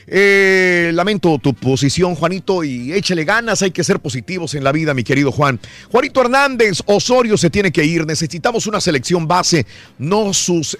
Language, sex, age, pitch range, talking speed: Spanish, male, 50-69, 125-185 Hz, 170 wpm